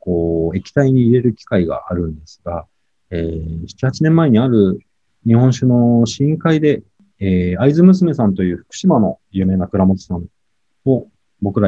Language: Japanese